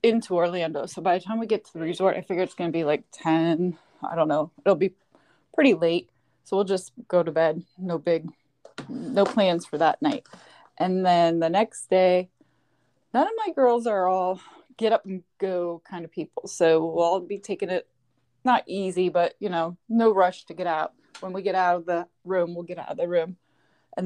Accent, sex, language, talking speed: American, female, English, 215 wpm